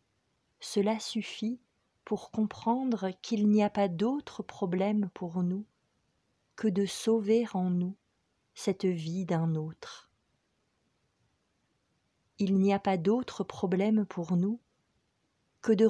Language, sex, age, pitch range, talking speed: French, female, 40-59, 185-215 Hz, 115 wpm